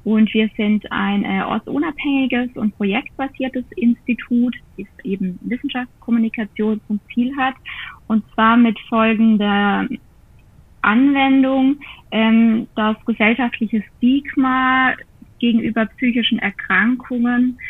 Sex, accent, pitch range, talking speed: female, German, 215-245 Hz, 90 wpm